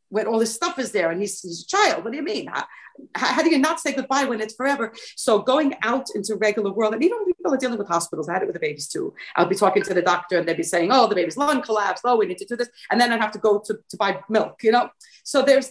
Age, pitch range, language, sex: 40-59, 185-270 Hz, English, female